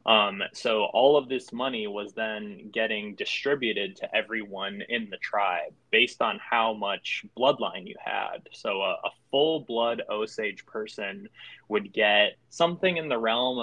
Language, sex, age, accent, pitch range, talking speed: English, male, 20-39, American, 105-125 Hz, 155 wpm